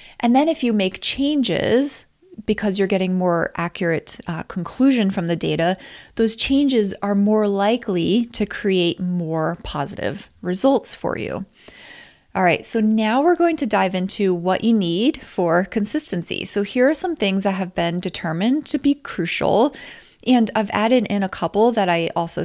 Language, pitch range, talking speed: English, 180-230 Hz, 170 wpm